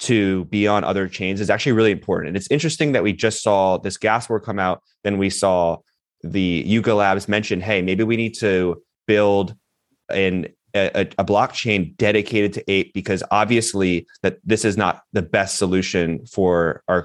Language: English